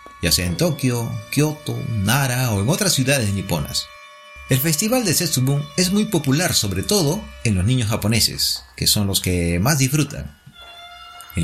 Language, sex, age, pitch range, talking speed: Spanish, male, 40-59, 95-155 Hz, 165 wpm